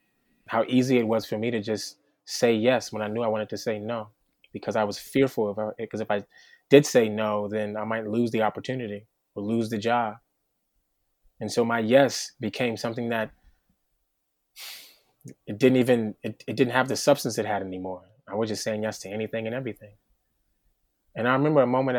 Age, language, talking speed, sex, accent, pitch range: 20-39, English, 200 wpm, male, American, 105-120 Hz